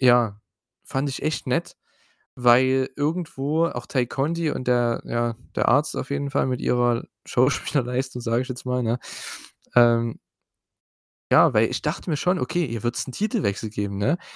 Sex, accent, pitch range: male, German, 110-150 Hz